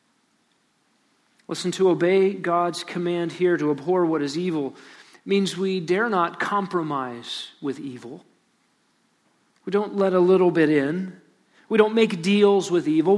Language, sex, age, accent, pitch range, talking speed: English, male, 40-59, American, 170-205 Hz, 140 wpm